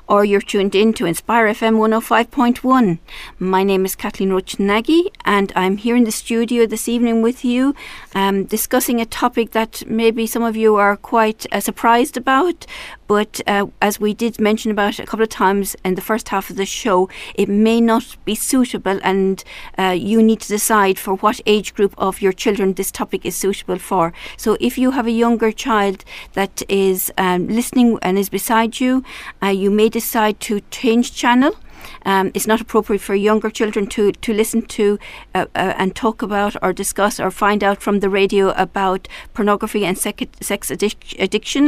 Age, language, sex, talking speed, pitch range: 50-69, English, female, 185 wpm, 195-225 Hz